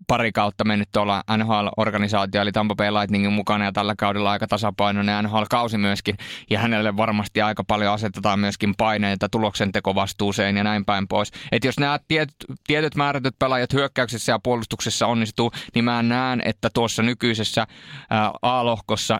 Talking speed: 165 wpm